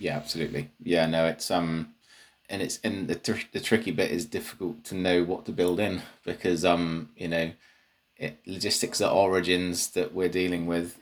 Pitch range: 80-90 Hz